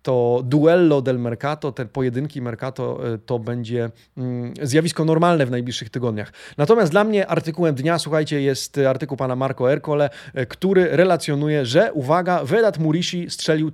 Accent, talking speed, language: native, 140 wpm, Polish